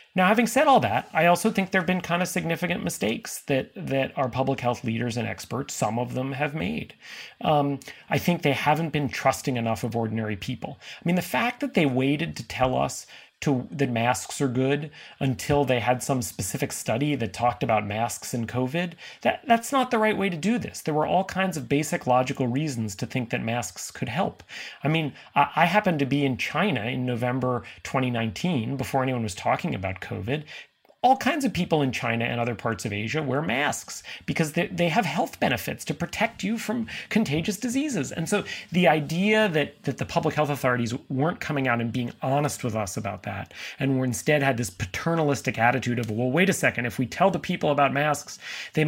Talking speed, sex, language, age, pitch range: 210 wpm, male, English, 30-49, 125-175 Hz